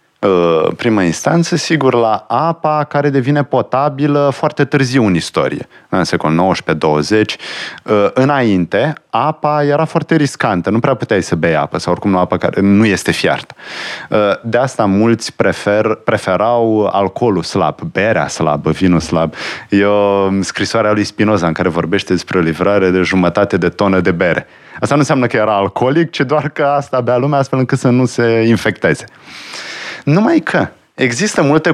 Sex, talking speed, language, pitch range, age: male, 155 wpm, Romanian, 100-150 Hz, 30-49